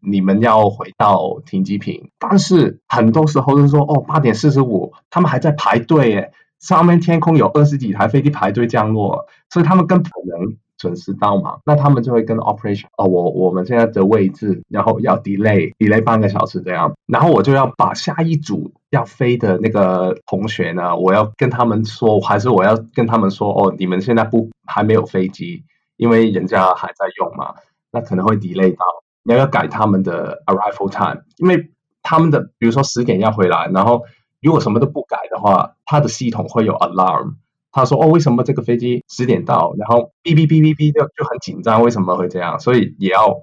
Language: Chinese